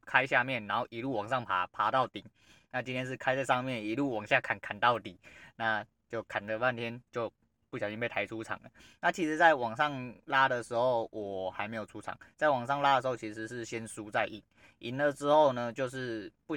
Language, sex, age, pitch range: Chinese, male, 20-39, 110-140 Hz